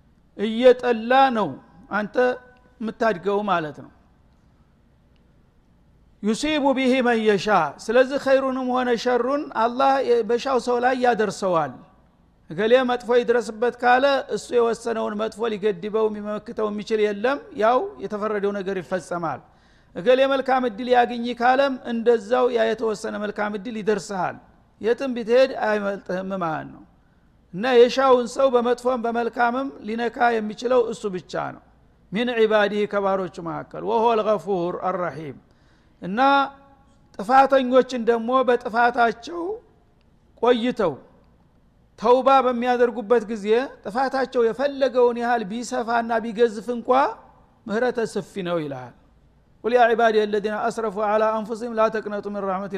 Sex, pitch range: male, 210-250 Hz